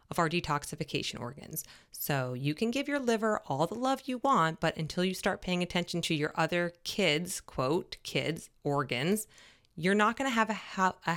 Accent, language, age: American, English, 20-39